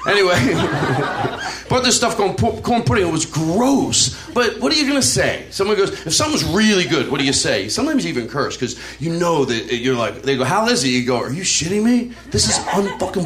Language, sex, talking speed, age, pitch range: English, male, 220 wpm, 40-59, 135-225 Hz